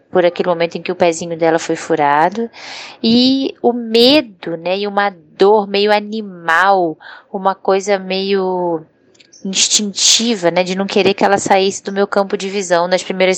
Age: 10-29